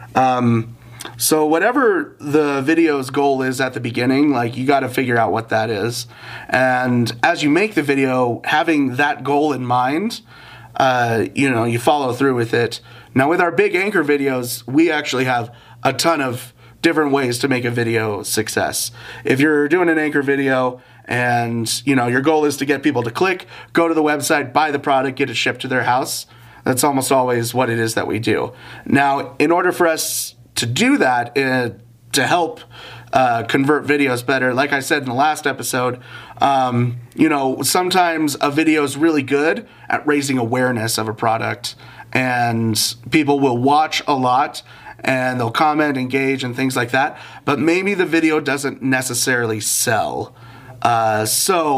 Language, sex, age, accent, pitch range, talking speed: English, male, 30-49, American, 120-145 Hz, 180 wpm